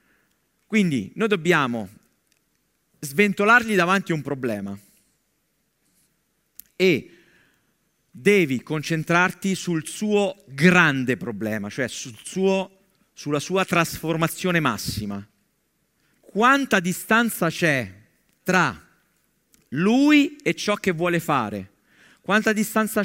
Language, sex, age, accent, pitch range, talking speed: Italian, male, 50-69, native, 145-190 Hz, 90 wpm